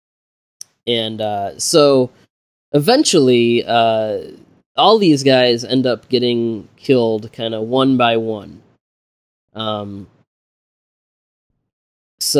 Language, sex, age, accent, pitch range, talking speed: English, male, 20-39, American, 105-130 Hz, 90 wpm